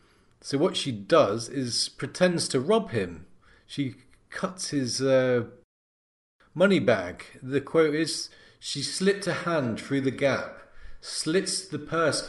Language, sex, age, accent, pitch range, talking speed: English, male, 40-59, British, 120-160 Hz, 135 wpm